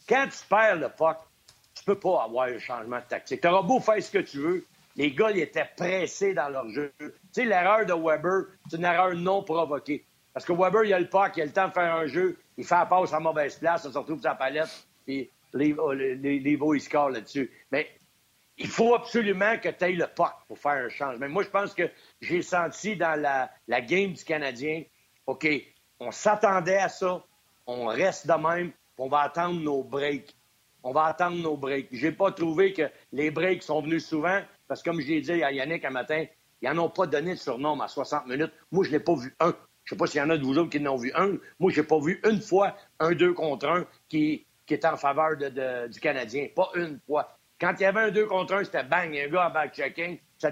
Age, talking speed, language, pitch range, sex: 60-79, 245 wpm, French, 145-185 Hz, male